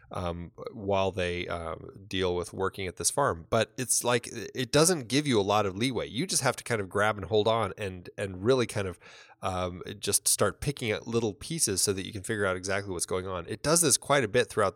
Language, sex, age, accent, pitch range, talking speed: English, male, 20-39, American, 95-130 Hz, 245 wpm